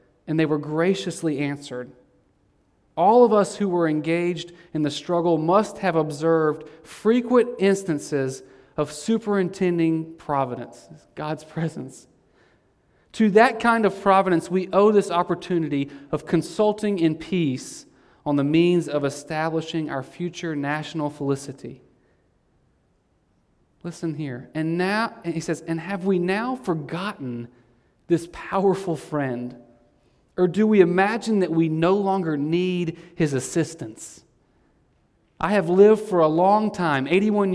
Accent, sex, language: American, male, English